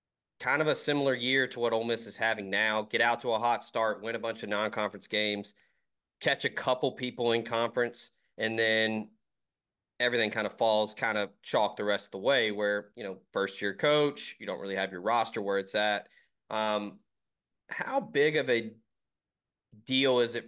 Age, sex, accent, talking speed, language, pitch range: 30-49, male, American, 195 wpm, English, 100-120 Hz